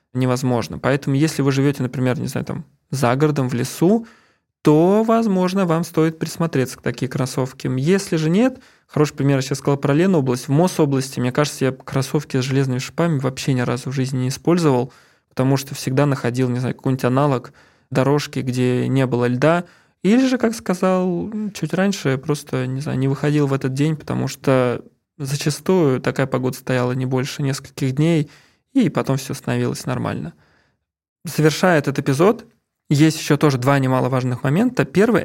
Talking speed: 170 wpm